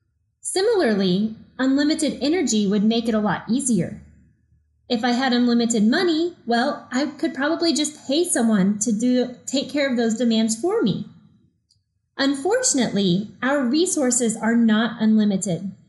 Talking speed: 135 wpm